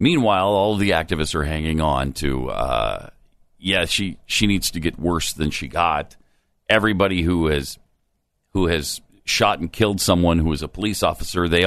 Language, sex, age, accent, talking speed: English, male, 50-69, American, 180 wpm